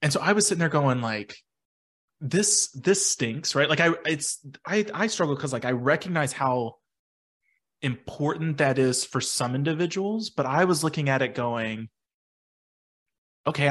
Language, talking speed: English, 160 wpm